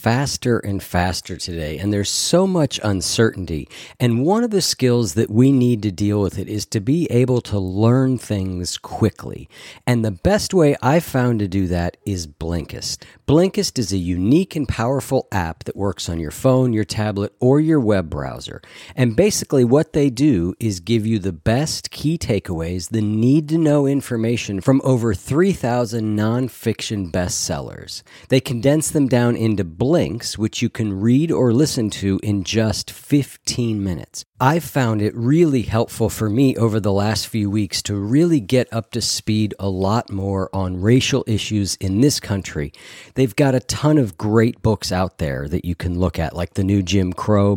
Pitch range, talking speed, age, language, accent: 95-125 Hz, 180 wpm, 40-59, English, American